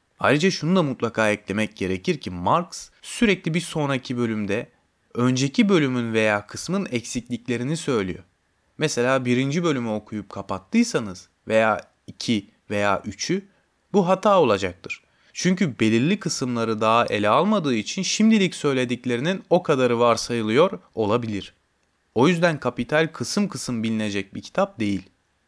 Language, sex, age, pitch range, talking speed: Turkish, male, 30-49, 100-150 Hz, 120 wpm